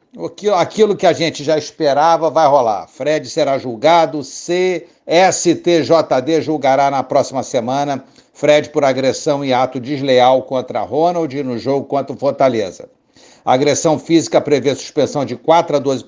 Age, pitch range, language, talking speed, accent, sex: 60-79, 140-175 Hz, Portuguese, 140 wpm, Brazilian, male